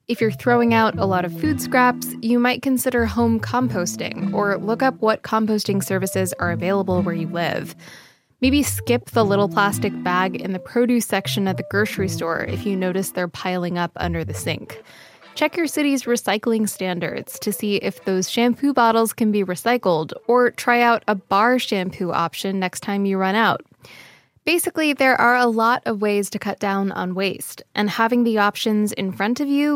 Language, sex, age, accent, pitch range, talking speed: English, female, 10-29, American, 185-230 Hz, 190 wpm